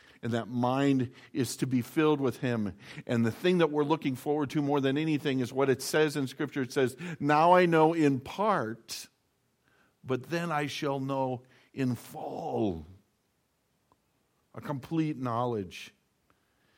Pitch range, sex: 130-165 Hz, male